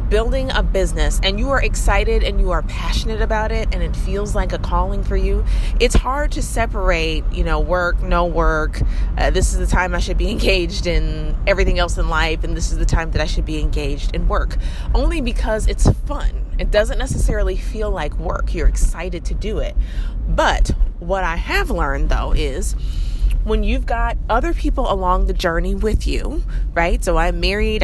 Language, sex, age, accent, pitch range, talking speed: English, female, 30-49, American, 165-220 Hz, 200 wpm